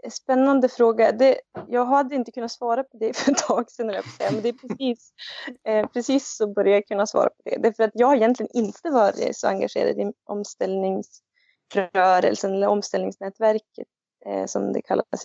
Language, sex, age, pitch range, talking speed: Swedish, female, 20-39, 185-235 Hz, 175 wpm